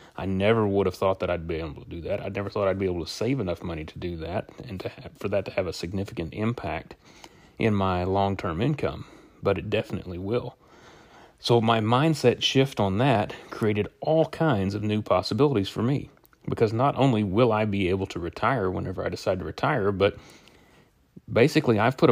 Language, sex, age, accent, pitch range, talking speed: English, male, 30-49, American, 100-120 Hz, 200 wpm